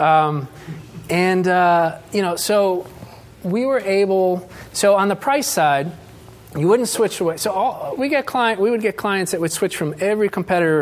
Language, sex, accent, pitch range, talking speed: English, male, American, 150-195 Hz, 185 wpm